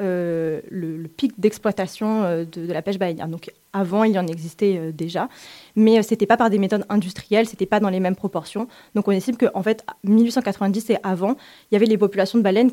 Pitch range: 185-230 Hz